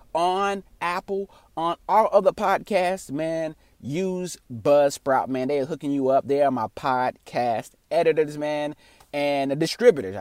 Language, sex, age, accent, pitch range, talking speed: English, male, 30-49, American, 120-160 Hz, 140 wpm